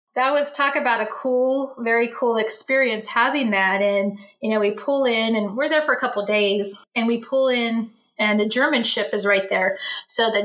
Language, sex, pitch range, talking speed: English, female, 215-260 Hz, 220 wpm